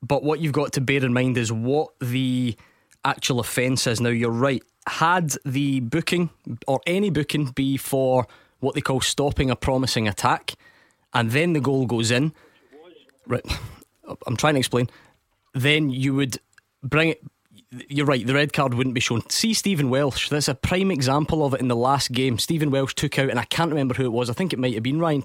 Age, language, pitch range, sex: 20-39, English, 120-145 Hz, male